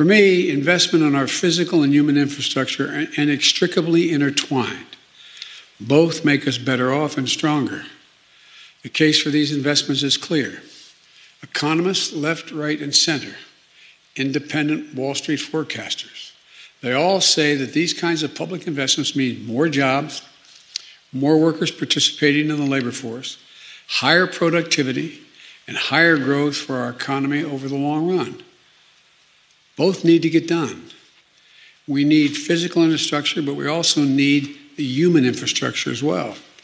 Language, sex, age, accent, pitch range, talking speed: Dutch, male, 60-79, American, 140-160 Hz, 140 wpm